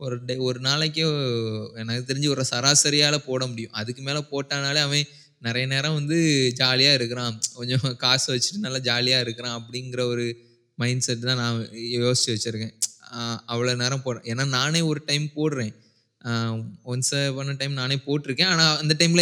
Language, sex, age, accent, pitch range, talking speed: Tamil, male, 20-39, native, 120-145 Hz, 150 wpm